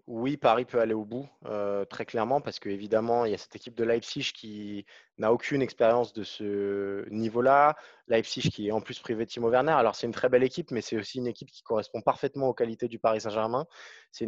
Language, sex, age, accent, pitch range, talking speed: French, male, 20-39, French, 120-150 Hz, 225 wpm